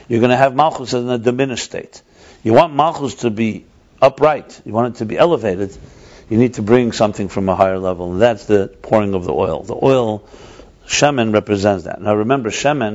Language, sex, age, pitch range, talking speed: English, male, 60-79, 100-125 Hz, 210 wpm